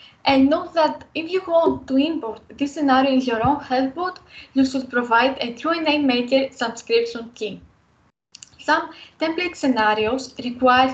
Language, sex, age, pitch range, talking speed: English, female, 10-29, 240-290 Hz, 155 wpm